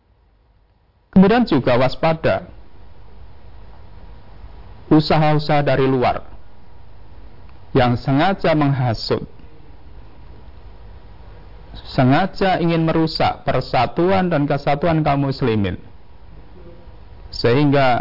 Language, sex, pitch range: Indonesian, male, 95-145 Hz